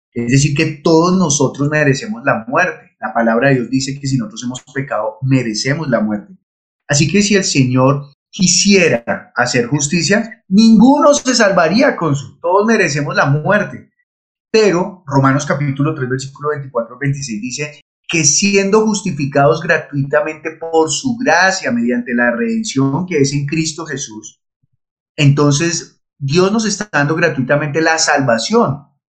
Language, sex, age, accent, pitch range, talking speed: Spanish, male, 30-49, Colombian, 140-190 Hz, 140 wpm